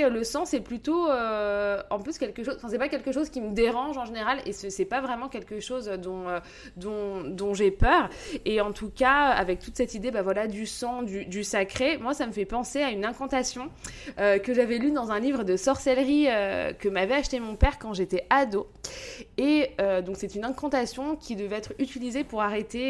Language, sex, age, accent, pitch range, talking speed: French, female, 20-39, French, 200-260 Hz, 220 wpm